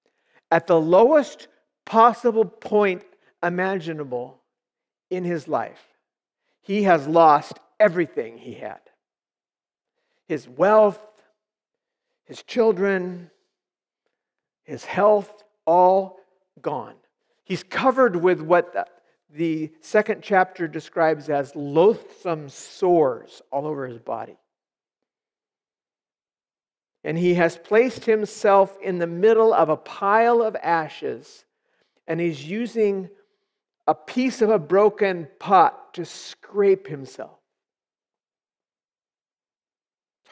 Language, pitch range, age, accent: English, 160-220 Hz, 50-69, American